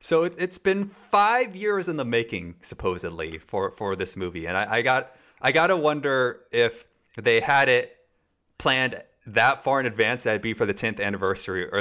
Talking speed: 185 wpm